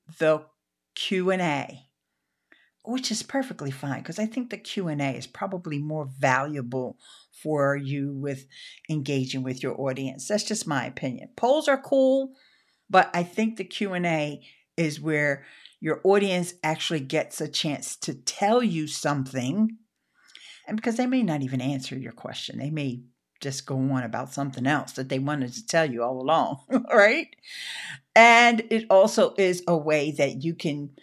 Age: 50-69